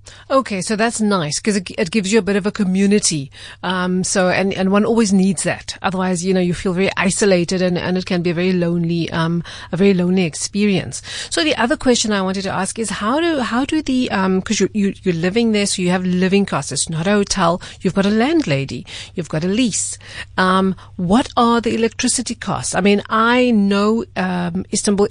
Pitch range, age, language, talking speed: 170-205 Hz, 40-59, English, 220 wpm